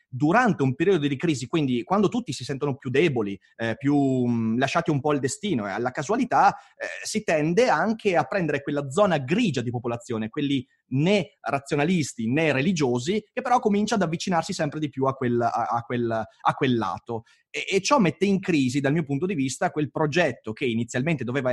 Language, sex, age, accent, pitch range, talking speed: Italian, male, 30-49, native, 125-190 Hz, 200 wpm